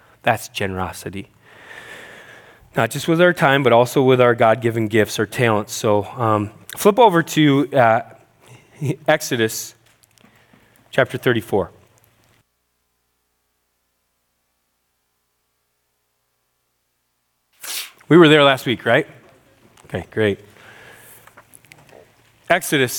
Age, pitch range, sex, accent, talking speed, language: 30-49, 110-165 Hz, male, American, 85 wpm, English